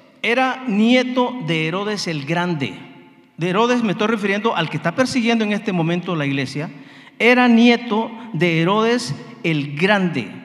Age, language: 50-69, Spanish